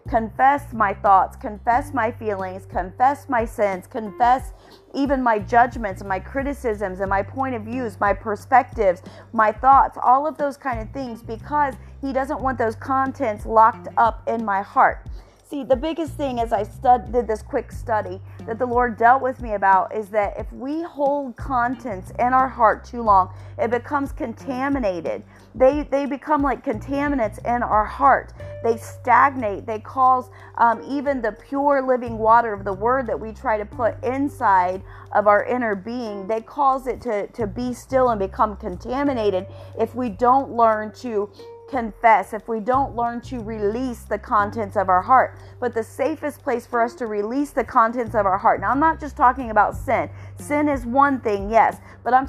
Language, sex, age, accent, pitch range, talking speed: English, female, 30-49, American, 215-265 Hz, 180 wpm